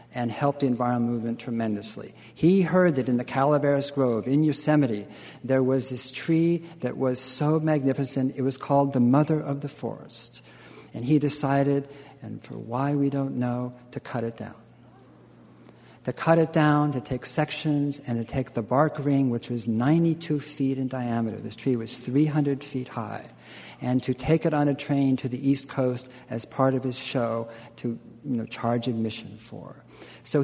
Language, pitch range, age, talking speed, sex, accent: English, 125-145 Hz, 60-79, 180 wpm, male, American